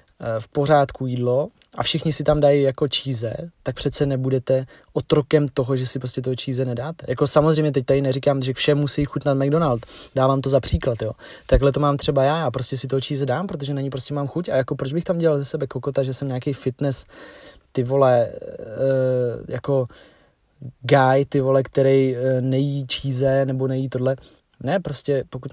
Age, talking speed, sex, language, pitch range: 20-39, 195 wpm, male, Czech, 130-150 Hz